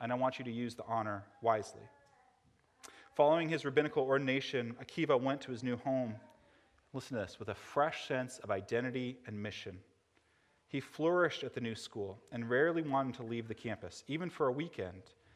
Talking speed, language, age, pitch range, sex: 185 wpm, English, 30-49, 110-150 Hz, male